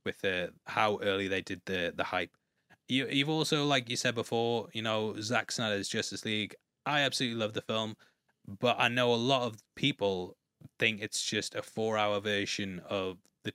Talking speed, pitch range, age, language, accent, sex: 185 wpm, 100-120 Hz, 20-39, English, British, male